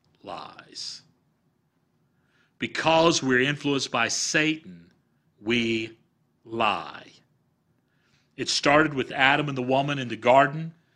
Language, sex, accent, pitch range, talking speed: English, male, American, 115-145 Hz, 100 wpm